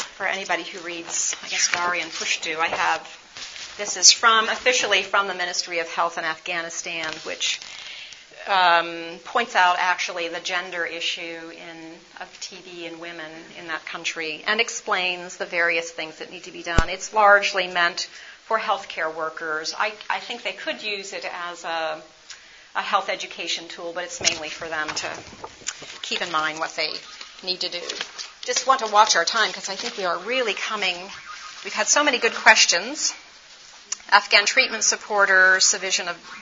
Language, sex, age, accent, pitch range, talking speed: English, female, 40-59, American, 170-215 Hz, 175 wpm